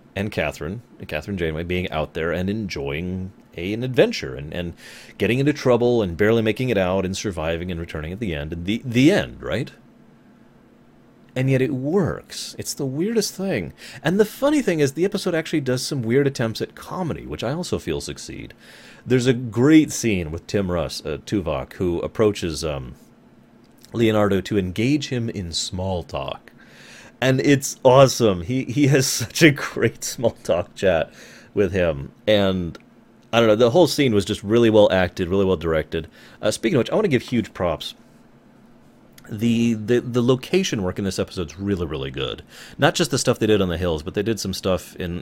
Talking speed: 195 wpm